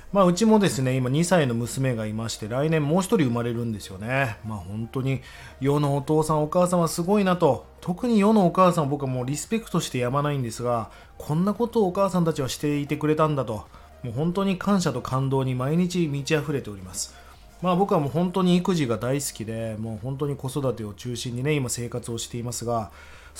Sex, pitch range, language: male, 120-180 Hz, Japanese